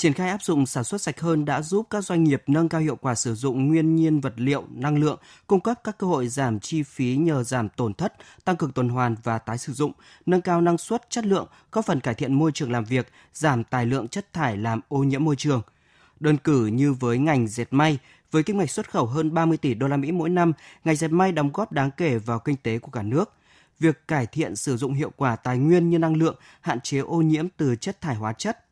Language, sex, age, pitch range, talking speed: Vietnamese, male, 20-39, 130-165 Hz, 255 wpm